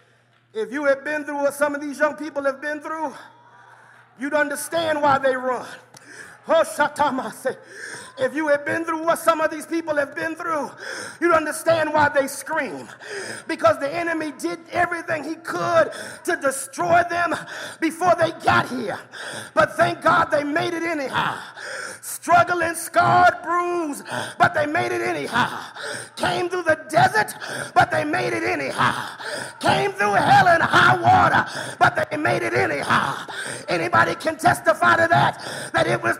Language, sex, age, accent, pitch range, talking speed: English, male, 40-59, American, 305-355 Hz, 155 wpm